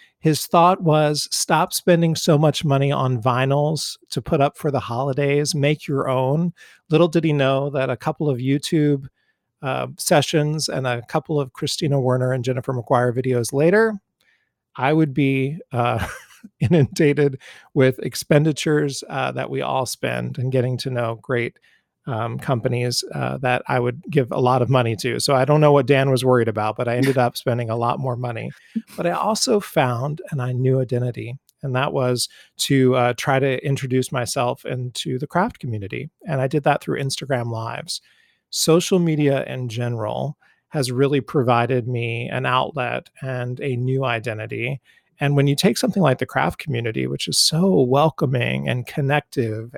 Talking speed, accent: 175 wpm, American